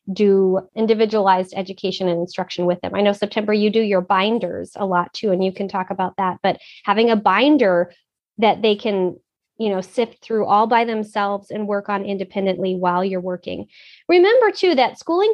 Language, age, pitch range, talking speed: English, 30-49, 195-245 Hz, 190 wpm